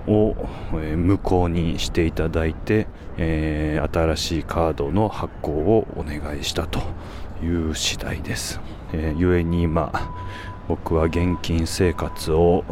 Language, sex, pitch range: Japanese, male, 80-95 Hz